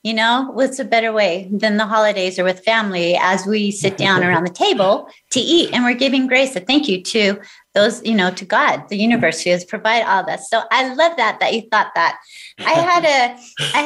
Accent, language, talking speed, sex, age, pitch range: American, English, 230 wpm, female, 30-49, 200-240 Hz